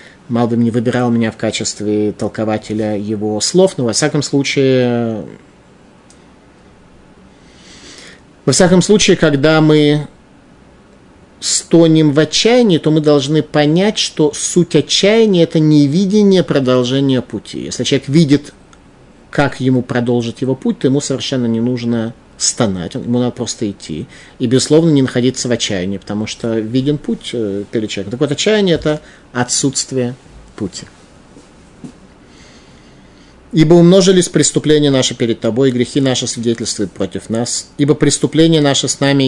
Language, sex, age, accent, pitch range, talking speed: Russian, male, 30-49, native, 120-150 Hz, 130 wpm